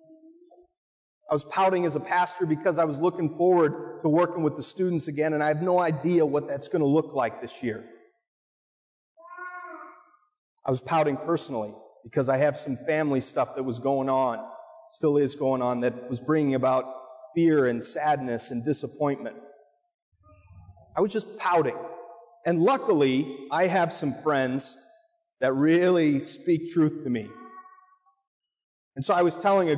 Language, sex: English, male